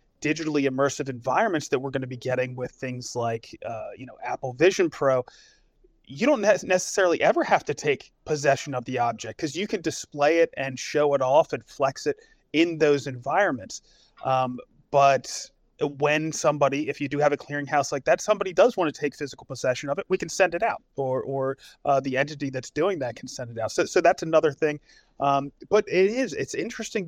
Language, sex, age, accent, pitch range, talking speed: English, male, 30-49, American, 130-155 Hz, 205 wpm